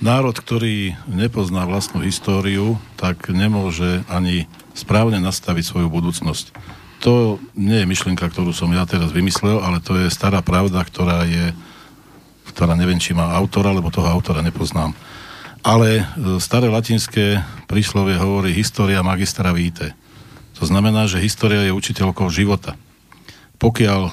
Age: 50-69